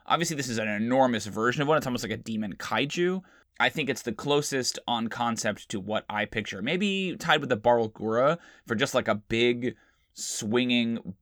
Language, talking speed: English, 200 wpm